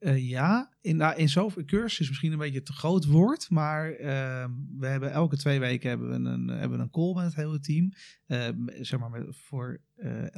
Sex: male